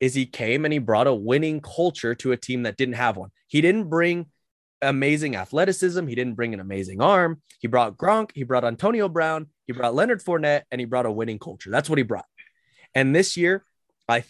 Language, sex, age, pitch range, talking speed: English, male, 20-39, 115-150 Hz, 220 wpm